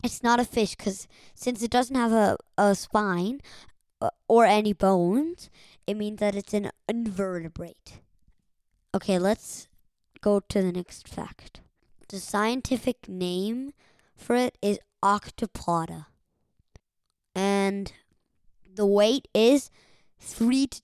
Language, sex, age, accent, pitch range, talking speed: English, male, 20-39, American, 185-230 Hz, 120 wpm